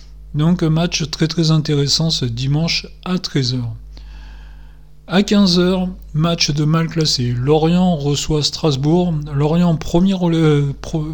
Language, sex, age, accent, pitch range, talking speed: French, male, 40-59, French, 140-170 Hz, 120 wpm